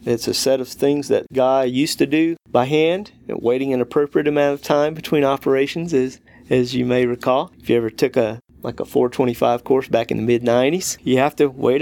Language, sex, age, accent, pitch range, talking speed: English, male, 40-59, American, 120-140 Hz, 225 wpm